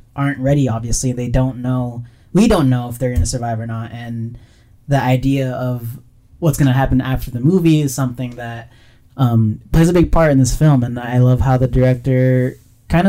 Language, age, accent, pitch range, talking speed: English, 20-39, American, 120-140 Hz, 195 wpm